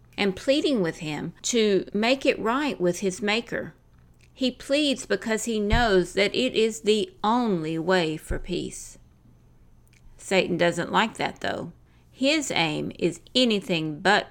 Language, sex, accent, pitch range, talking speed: English, female, American, 165-220 Hz, 145 wpm